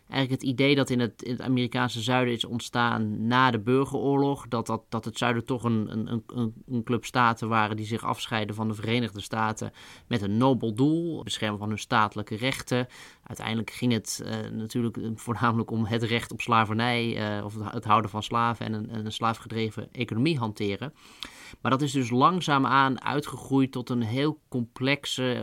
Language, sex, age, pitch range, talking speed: Dutch, male, 20-39, 110-130 Hz, 175 wpm